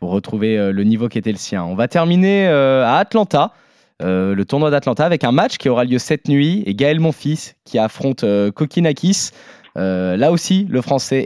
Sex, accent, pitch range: male, French, 110-140 Hz